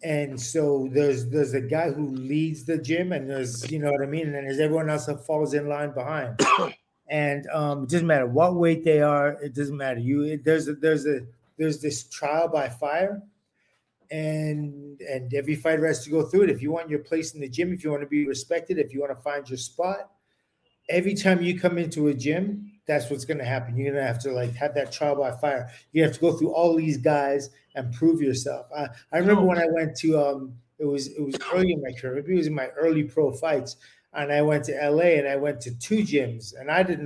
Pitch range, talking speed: 140-160 Hz, 245 wpm